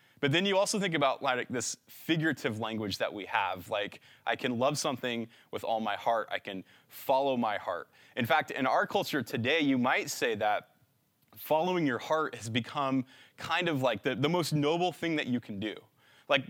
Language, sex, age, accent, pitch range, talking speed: English, male, 20-39, American, 120-155 Hz, 195 wpm